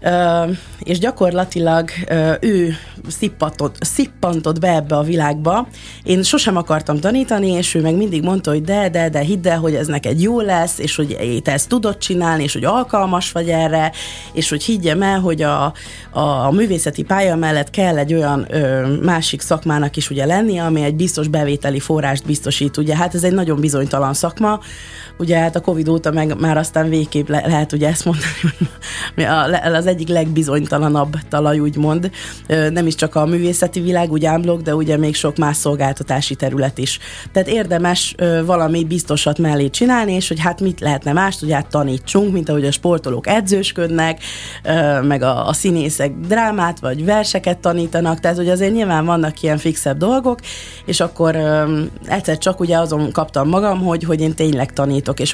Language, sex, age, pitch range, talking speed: Hungarian, female, 30-49, 150-180 Hz, 170 wpm